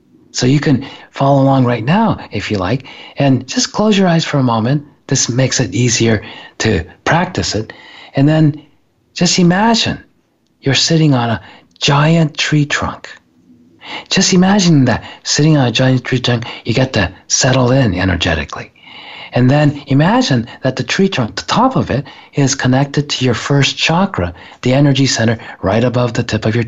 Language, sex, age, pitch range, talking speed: English, male, 40-59, 110-145 Hz, 175 wpm